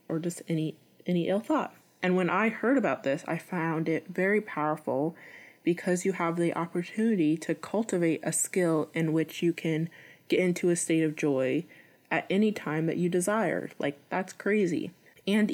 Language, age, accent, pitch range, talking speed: English, 20-39, American, 155-180 Hz, 180 wpm